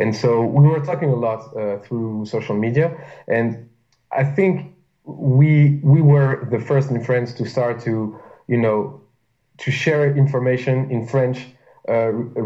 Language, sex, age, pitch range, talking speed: English, male, 20-39, 115-140 Hz, 155 wpm